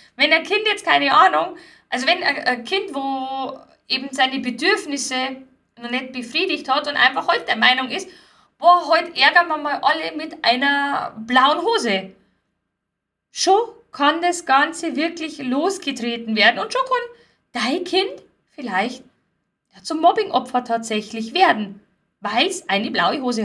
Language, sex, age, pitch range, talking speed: German, female, 10-29, 235-315 Hz, 145 wpm